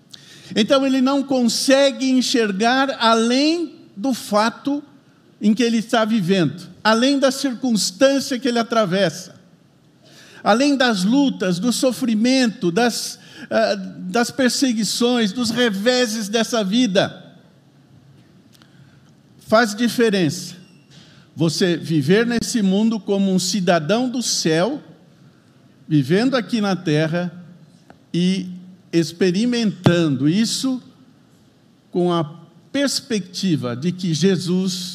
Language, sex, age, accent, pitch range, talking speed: Portuguese, male, 50-69, Brazilian, 180-245 Hz, 95 wpm